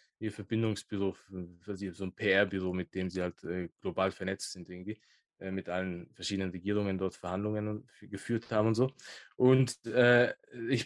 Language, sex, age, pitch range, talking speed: German, male, 20-39, 115-150 Hz, 170 wpm